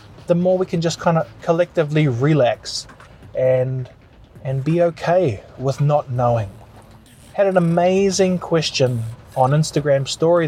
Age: 20-39